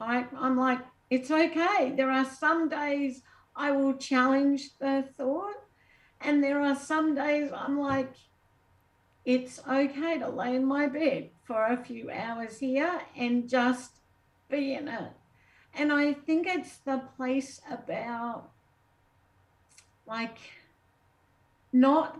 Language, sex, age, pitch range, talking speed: English, female, 60-79, 250-295 Hz, 125 wpm